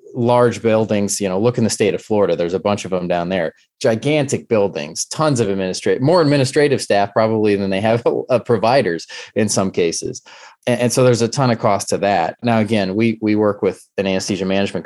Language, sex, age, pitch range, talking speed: English, male, 20-39, 90-110 Hz, 220 wpm